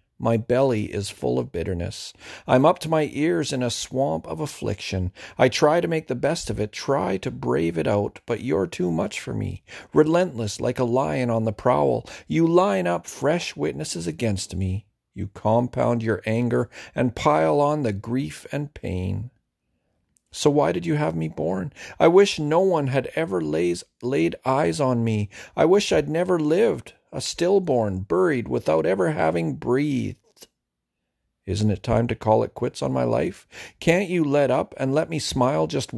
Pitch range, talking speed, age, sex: 95-135 Hz, 180 wpm, 40-59, male